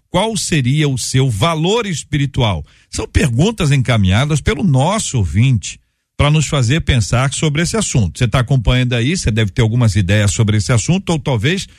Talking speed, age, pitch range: 170 wpm, 50-69, 110-155 Hz